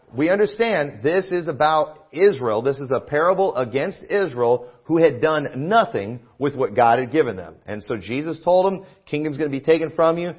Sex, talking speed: male, 195 wpm